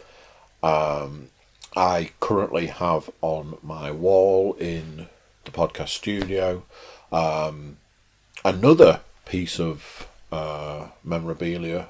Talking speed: 85 wpm